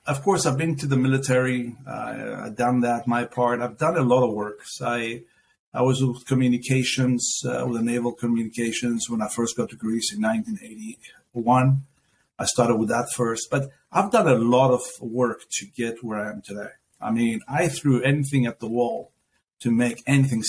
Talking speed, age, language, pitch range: 195 wpm, 50-69, English, 120-165 Hz